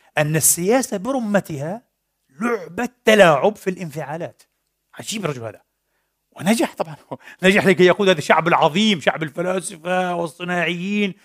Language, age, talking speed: Arabic, 40-59, 110 wpm